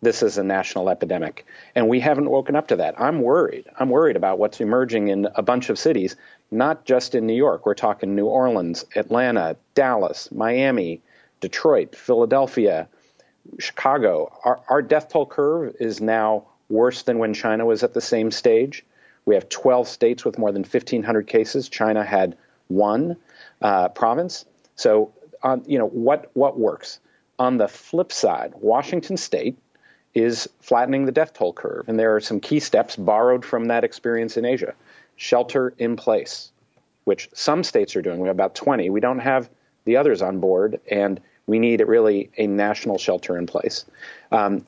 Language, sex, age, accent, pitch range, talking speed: English, male, 40-59, American, 105-175 Hz, 175 wpm